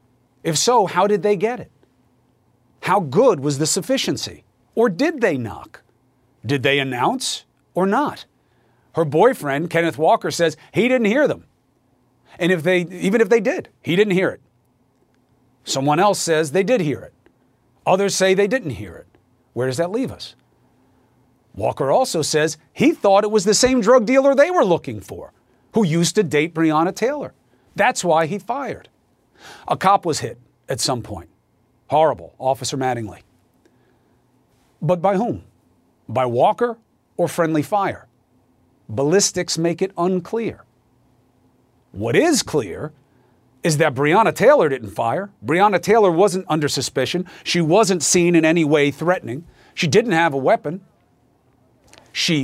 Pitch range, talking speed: 130-195 Hz, 150 wpm